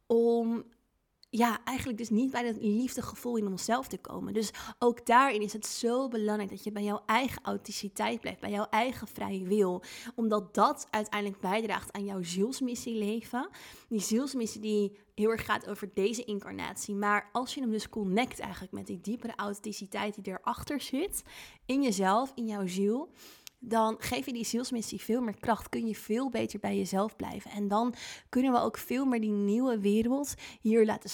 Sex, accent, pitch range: female, Dutch, 205-240 Hz